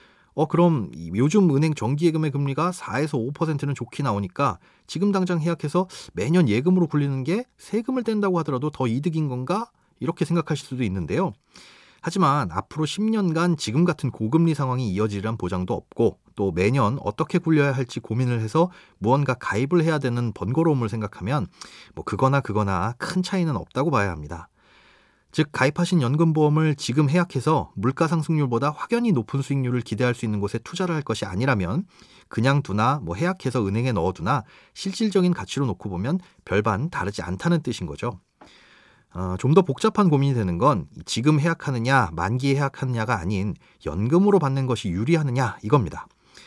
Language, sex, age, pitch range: Korean, male, 30-49, 115-170 Hz